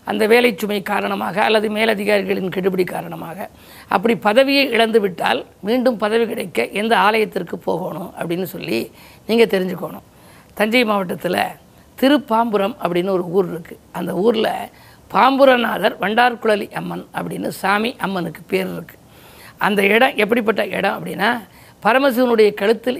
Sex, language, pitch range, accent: female, Tamil, 200-235 Hz, native